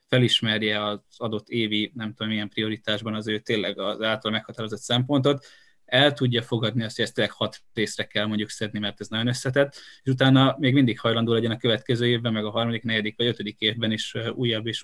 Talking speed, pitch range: 200 wpm, 105-120 Hz